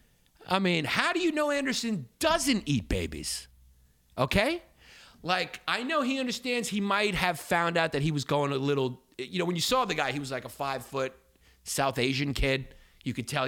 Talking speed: 200 wpm